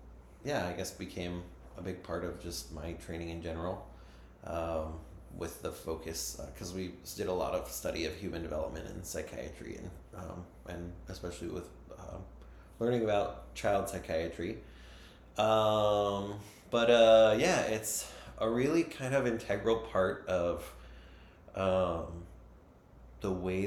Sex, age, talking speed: male, 30-49, 140 wpm